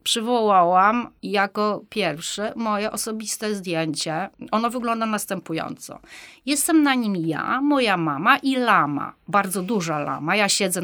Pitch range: 170-215 Hz